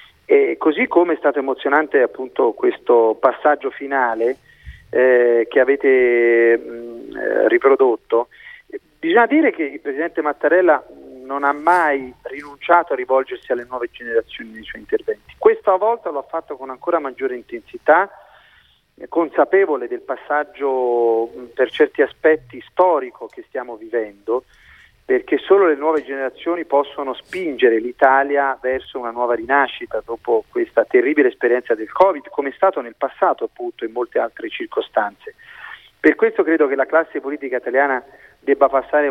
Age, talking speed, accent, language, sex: 40-59, 135 wpm, native, Italian, male